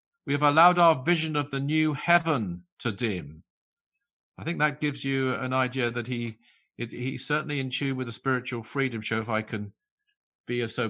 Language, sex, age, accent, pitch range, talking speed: English, male, 50-69, British, 115-150 Hz, 195 wpm